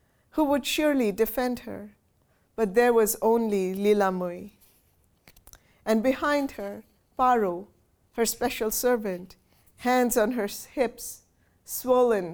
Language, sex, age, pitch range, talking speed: English, female, 50-69, 215-260 Hz, 110 wpm